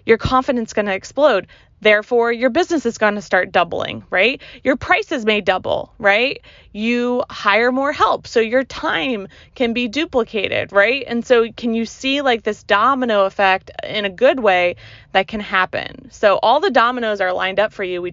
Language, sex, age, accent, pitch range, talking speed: English, female, 20-39, American, 205-270 Hz, 190 wpm